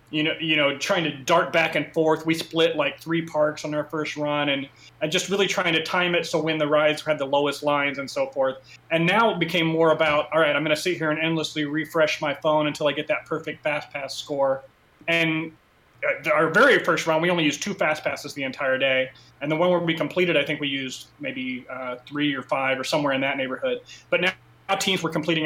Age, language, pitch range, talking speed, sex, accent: 30-49, English, 145-170 Hz, 240 wpm, male, American